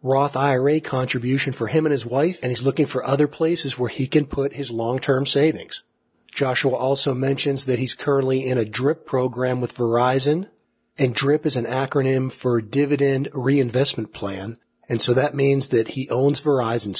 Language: German